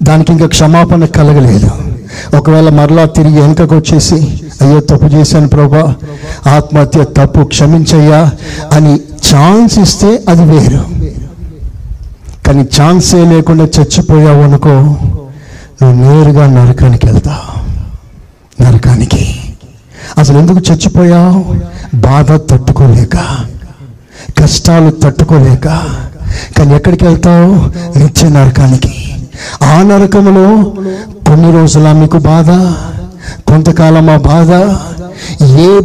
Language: Telugu